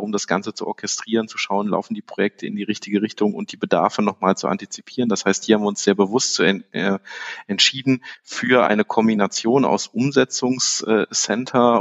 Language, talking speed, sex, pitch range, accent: German, 175 wpm, male, 100-120 Hz, German